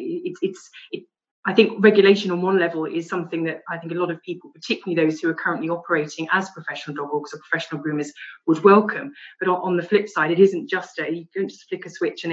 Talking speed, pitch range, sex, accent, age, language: 235 wpm, 160-195 Hz, female, British, 30-49, English